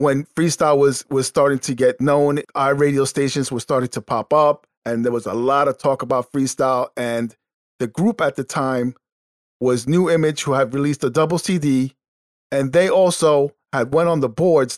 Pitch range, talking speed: 130-165 Hz, 195 wpm